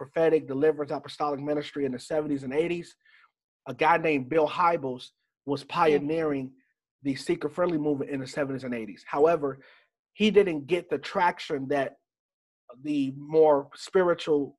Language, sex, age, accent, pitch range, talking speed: English, male, 30-49, American, 145-170 Hz, 140 wpm